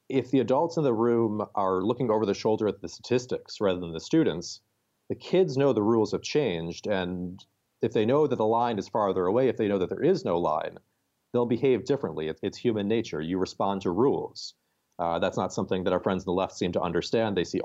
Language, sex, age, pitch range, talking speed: English, male, 40-59, 95-115 Hz, 230 wpm